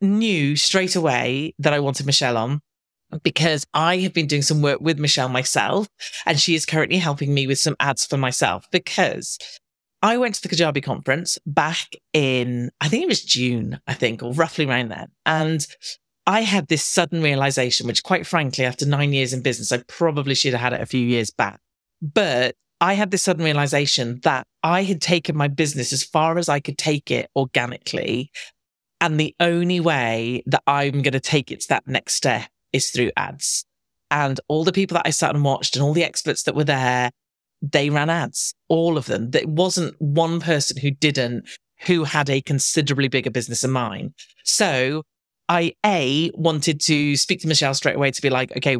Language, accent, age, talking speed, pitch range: English, British, 40-59, 195 wpm, 135-165 Hz